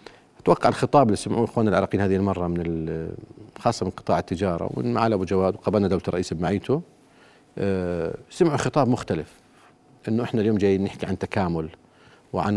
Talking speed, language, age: 155 wpm, Arabic, 50-69